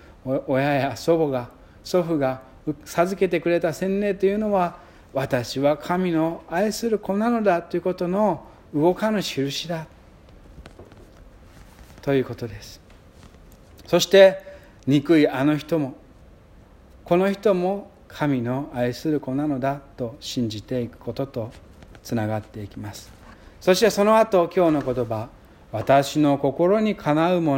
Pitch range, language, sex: 110-180 Hz, Japanese, male